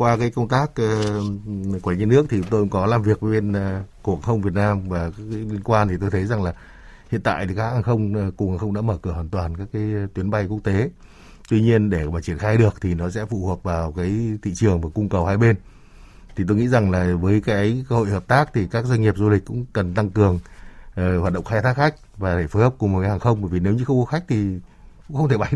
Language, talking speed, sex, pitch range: Vietnamese, 270 wpm, male, 95-115 Hz